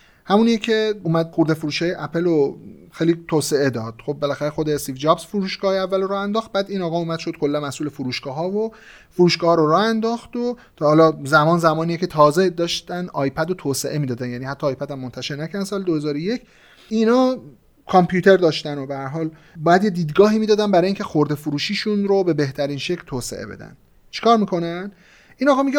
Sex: male